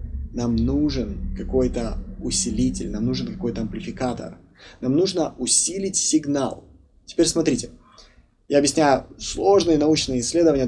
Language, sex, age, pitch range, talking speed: Russian, male, 20-39, 110-150 Hz, 105 wpm